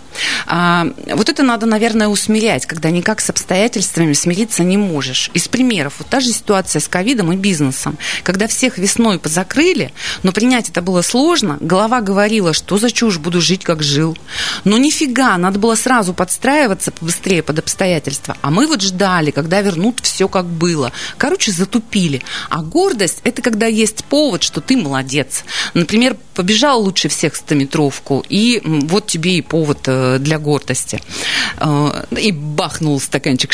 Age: 30-49